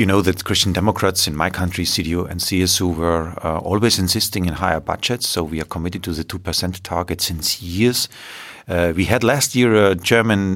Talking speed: 200 wpm